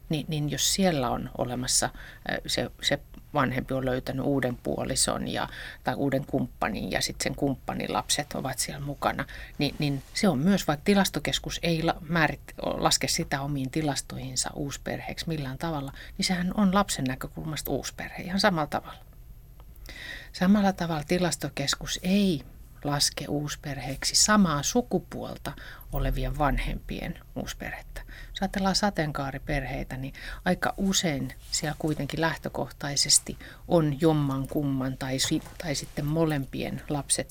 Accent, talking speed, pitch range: native, 125 wpm, 135-165 Hz